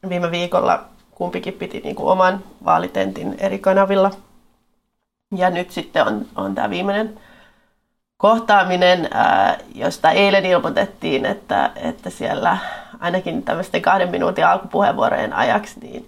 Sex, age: female, 30-49